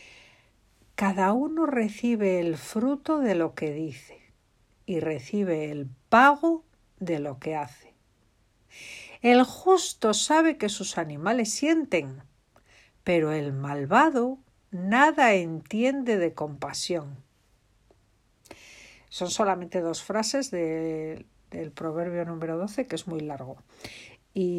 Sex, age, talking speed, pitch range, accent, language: female, 60-79, 105 wpm, 145-225 Hz, Spanish, Spanish